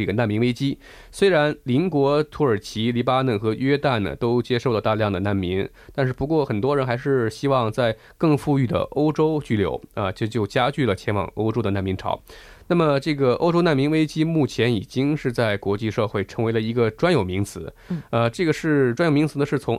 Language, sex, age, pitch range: Korean, male, 20-39, 105-140 Hz